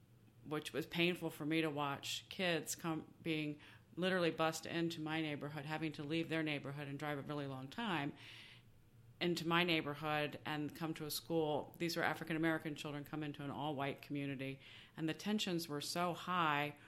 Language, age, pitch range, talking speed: English, 40-59, 140-160 Hz, 175 wpm